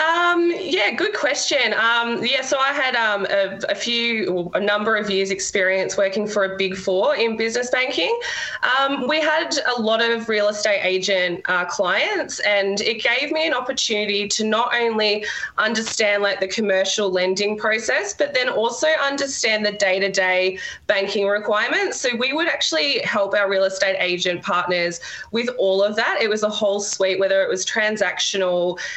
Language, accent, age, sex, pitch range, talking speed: English, Australian, 20-39, female, 190-235 Hz, 170 wpm